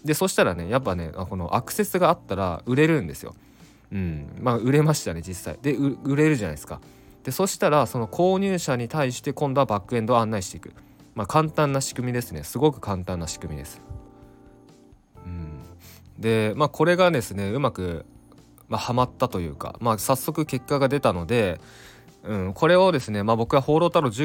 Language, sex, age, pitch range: Japanese, male, 20-39, 95-140 Hz